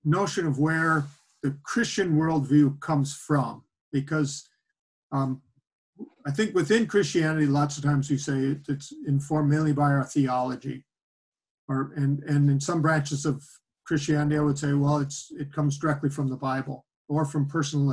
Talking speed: 155 wpm